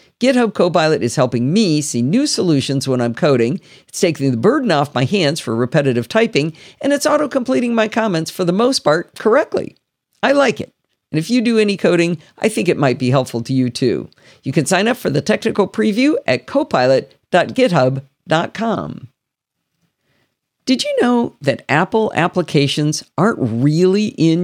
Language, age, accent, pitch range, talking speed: English, 50-69, American, 140-220 Hz, 165 wpm